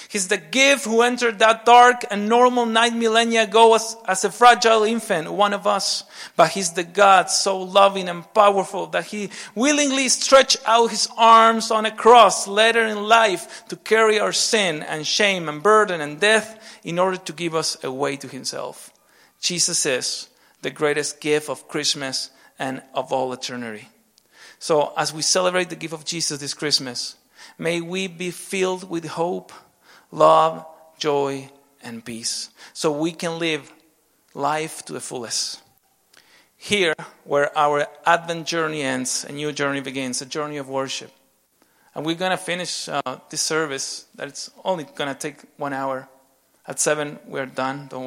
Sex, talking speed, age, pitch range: male, 165 wpm, 40-59, 140-205 Hz